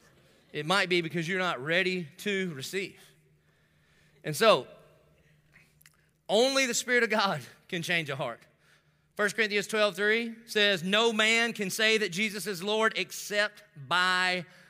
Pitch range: 150-185 Hz